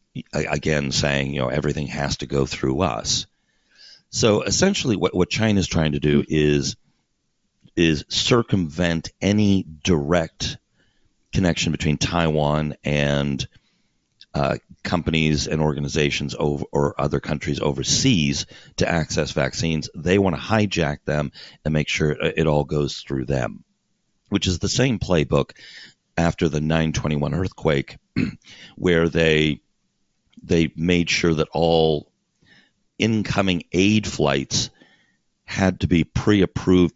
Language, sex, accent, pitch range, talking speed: English, male, American, 75-90 Hz, 125 wpm